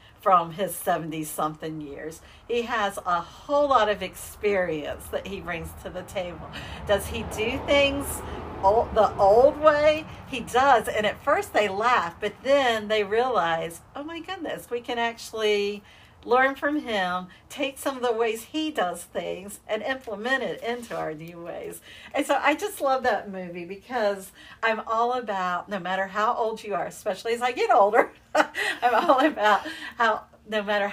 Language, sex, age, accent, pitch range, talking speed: English, female, 50-69, American, 175-240 Hz, 170 wpm